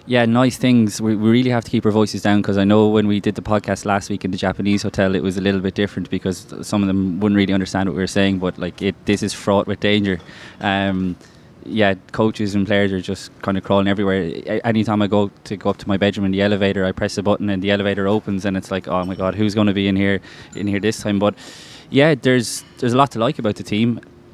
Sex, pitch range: male, 95-105 Hz